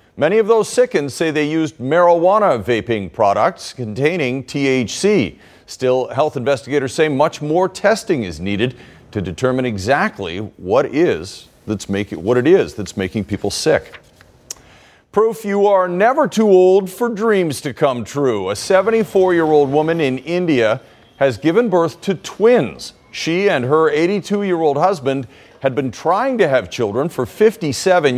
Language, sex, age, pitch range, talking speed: English, male, 40-59, 115-185 Hz, 145 wpm